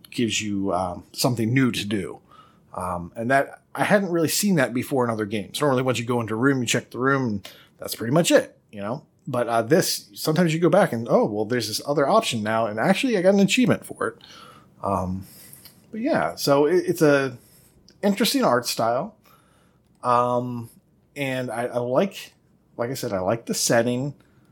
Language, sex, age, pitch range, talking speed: English, male, 30-49, 110-160 Hz, 200 wpm